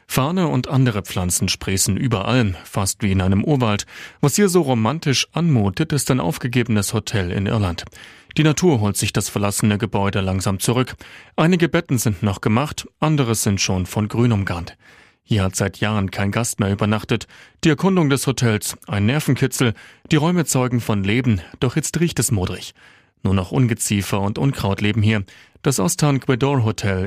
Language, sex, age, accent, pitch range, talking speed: German, male, 40-59, German, 100-135 Hz, 170 wpm